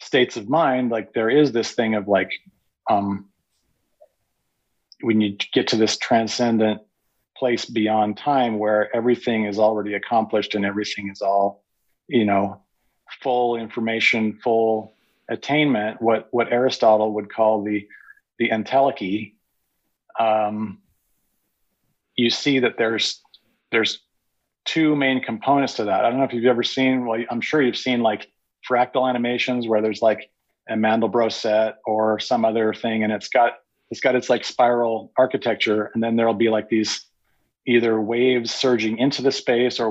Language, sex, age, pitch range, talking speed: English, male, 40-59, 105-120 Hz, 150 wpm